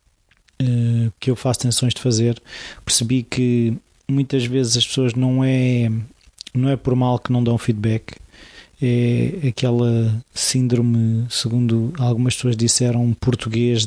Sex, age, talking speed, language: male, 20-39, 130 wpm, Portuguese